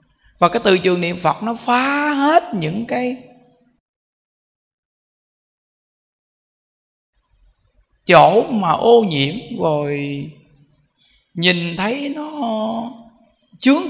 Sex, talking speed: male, 85 wpm